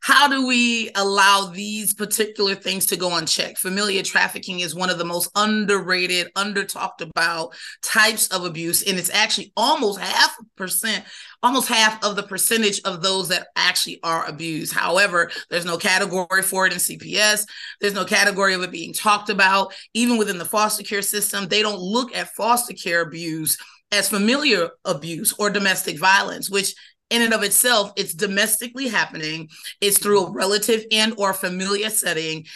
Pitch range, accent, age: 180-215 Hz, American, 30-49